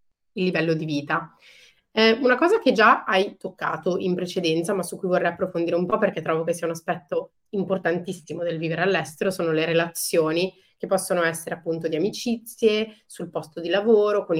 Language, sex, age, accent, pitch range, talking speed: Italian, female, 30-49, native, 170-210 Hz, 185 wpm